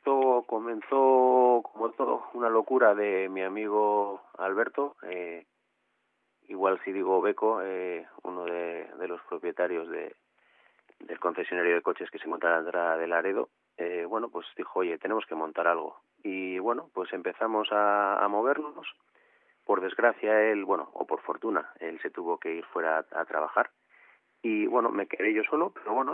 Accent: Spanish